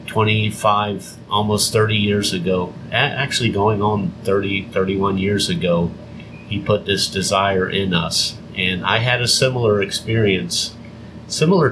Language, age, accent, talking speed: English, 50-69, American, 130 wpm